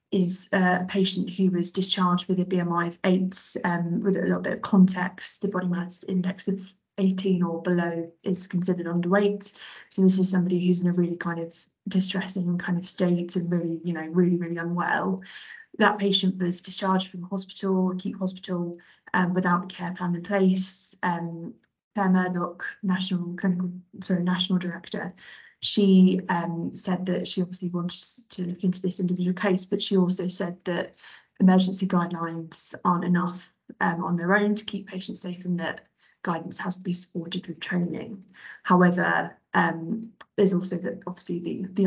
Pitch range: 175-190 Hz